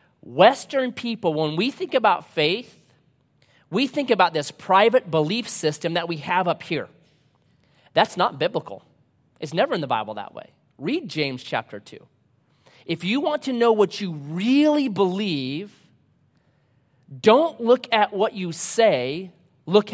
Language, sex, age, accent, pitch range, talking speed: English, male, 30-49, American, 155-225 Hz, 145 wpm